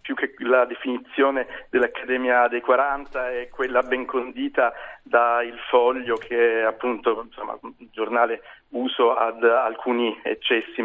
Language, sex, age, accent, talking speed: Italian, male, 40-59, native, 125 wpm